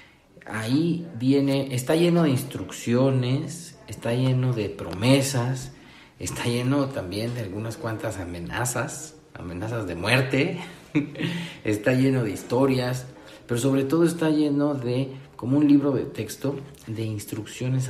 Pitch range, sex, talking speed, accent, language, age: 110-145 Hz, male, 125 wpm, Mexican, Spanish, 50-69